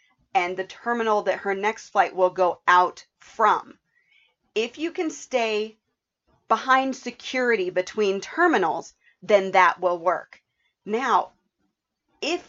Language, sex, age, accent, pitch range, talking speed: English, female, 40-59, American, 180-235 Hz, 120 wpm